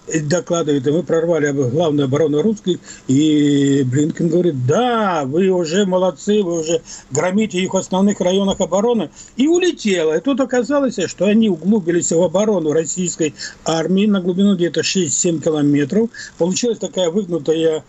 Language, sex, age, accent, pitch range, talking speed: Russian, male, 60-79, native, 155-210 Hz, 140 wpm